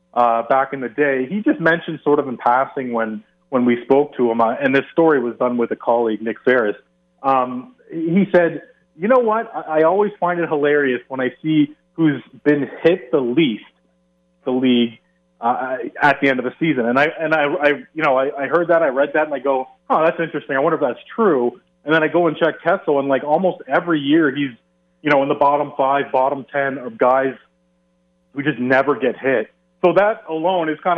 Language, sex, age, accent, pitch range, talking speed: English, male, 30-49, American, 125-165 Hz, 225 wpm